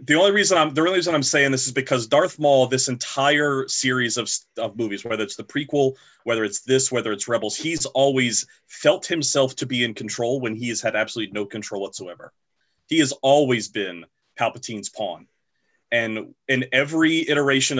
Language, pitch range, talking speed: English, 110-135 Hz, 190 wpm